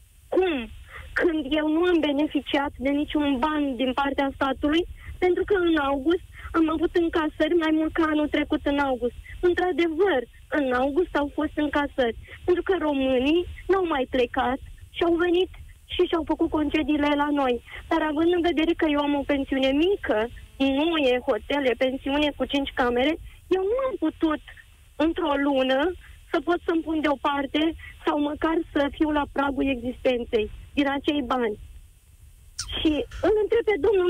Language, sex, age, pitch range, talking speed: Romanian, female, 20-39, 280-335 Hz, 160 wpm